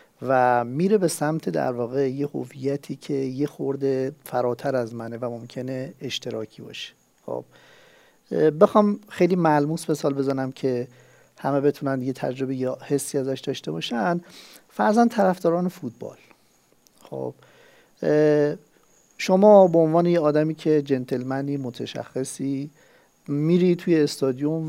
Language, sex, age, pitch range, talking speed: Persian, male, 50-69, 130-175 Hz, 120 wpm